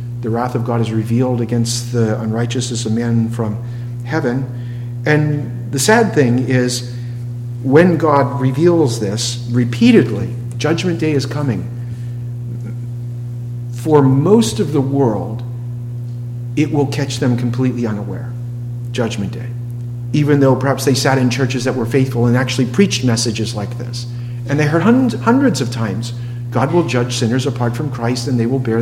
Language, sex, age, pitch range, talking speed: English, male, 50-69, 120-135 Hz, 150 wpm